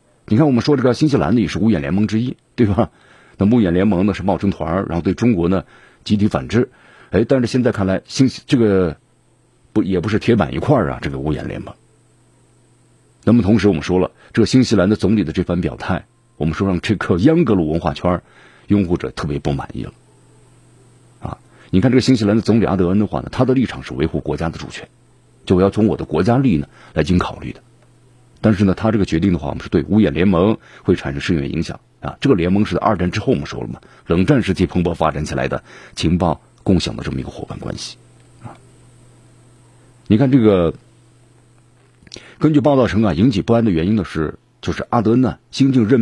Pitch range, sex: 95-120 Hz, male